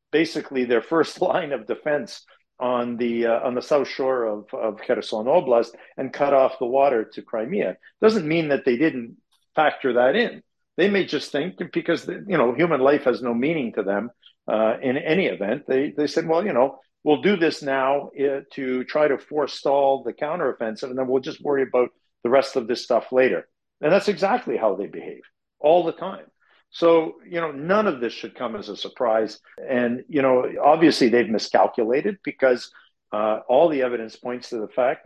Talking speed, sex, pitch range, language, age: 195 wpm, male, 115-150 Hz, English, 50-69